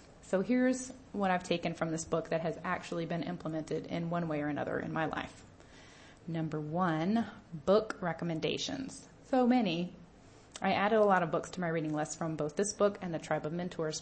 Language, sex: English, female